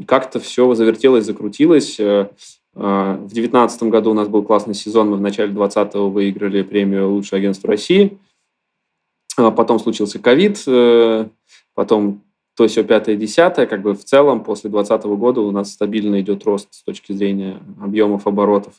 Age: 20-39